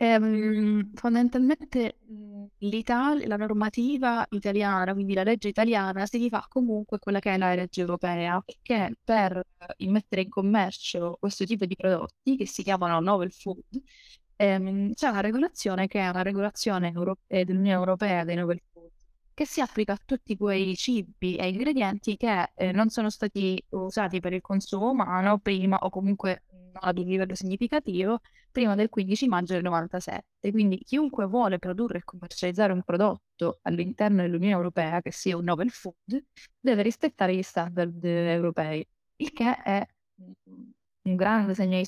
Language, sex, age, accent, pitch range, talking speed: Italian, female, 20-39, native, 180-220 Hz, 155 wpm